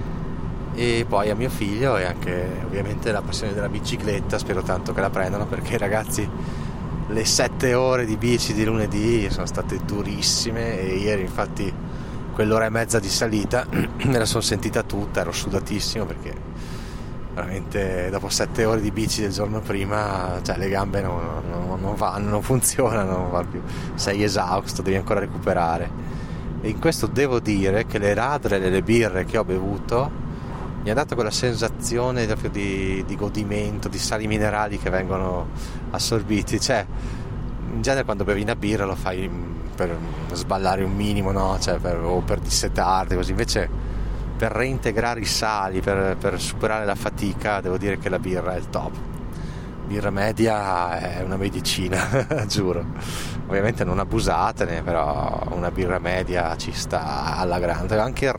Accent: native